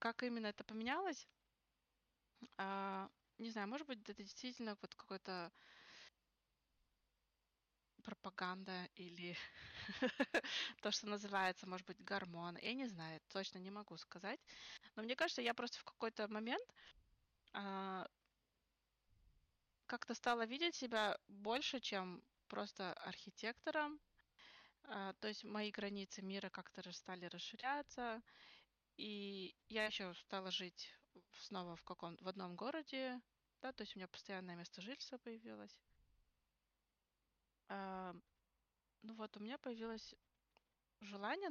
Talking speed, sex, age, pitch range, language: 110 wpm, female, 20-39, 180-230 Hz, Russian